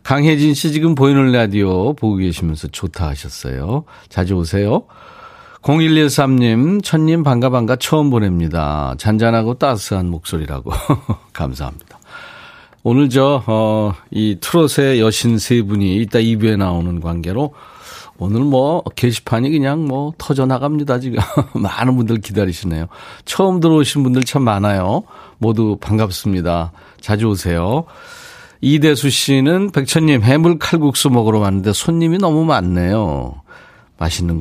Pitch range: 90-140 Hz